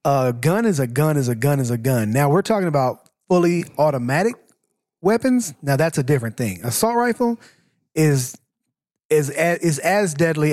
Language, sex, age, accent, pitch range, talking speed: English, male, 30-49, American, 140-190 Hz, 180 wpm